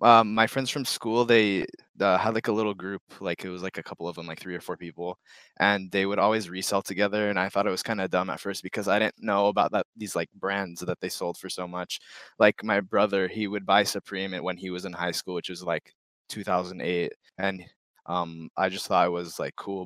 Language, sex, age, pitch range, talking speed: English, male, 20-39, 95-125 Hz, 250 wpm